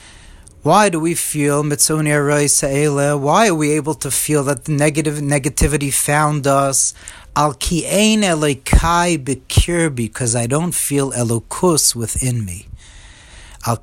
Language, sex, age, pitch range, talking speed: English, male, 40-59, 120-155 Hz, 120 wpm